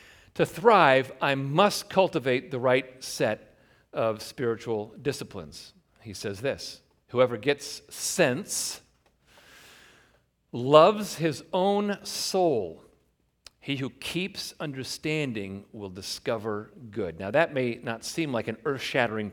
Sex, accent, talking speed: male, American, 110 wpm